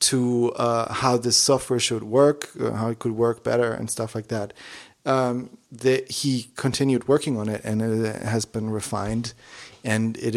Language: English